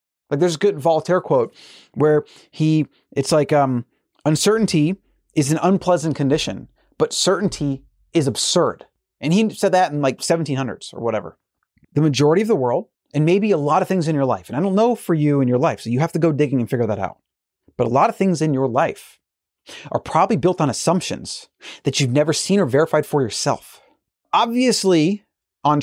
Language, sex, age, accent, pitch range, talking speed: English, male, 30-49, American, 130-165 Hz, 195 wpm